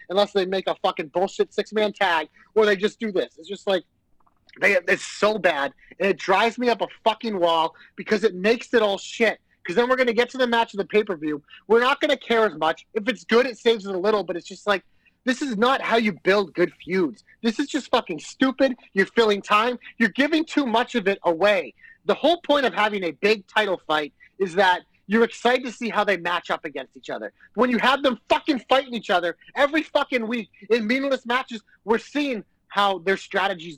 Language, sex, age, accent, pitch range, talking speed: English, male, 30-49, American, 185-245 Hz, 230 wpm